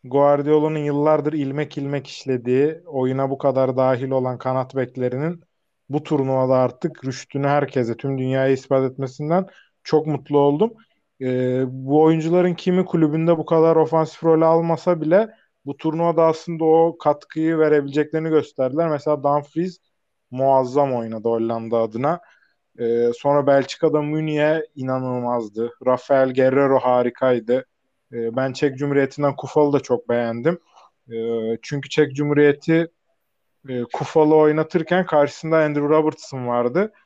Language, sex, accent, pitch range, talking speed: Turkish, male, native, 130-165 Hz, 115 wpm